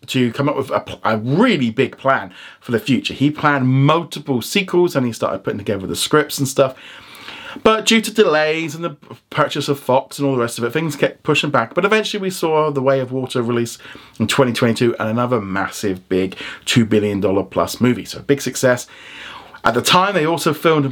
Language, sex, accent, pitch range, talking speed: English, male, British, 120-155 Hz, 210 wpm